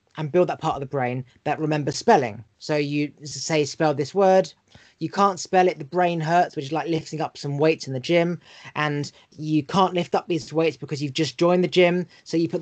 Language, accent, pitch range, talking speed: English, British, 145-175 Hz, 235 wpm